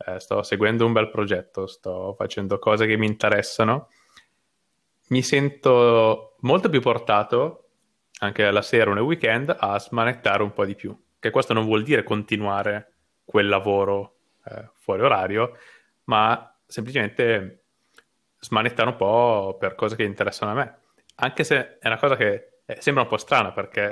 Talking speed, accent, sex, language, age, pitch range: 155 wpm, native, male, Italian, 20-39, 105-120 Hz